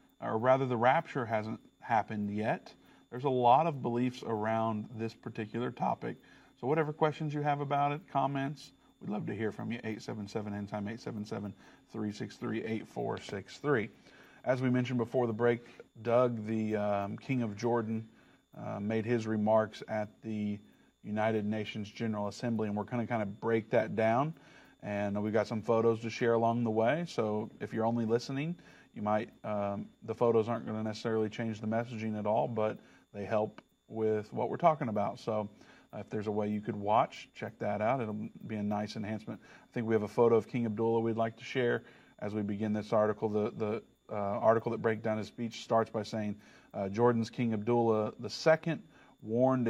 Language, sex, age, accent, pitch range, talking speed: English, male, 40-59, American, 105-120 Hz, 185 wpm